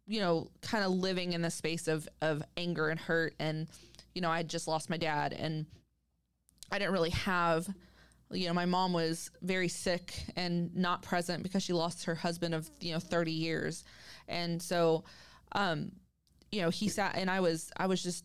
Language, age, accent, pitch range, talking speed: English, 20-39, American, 165-190 Hz, 195 wpm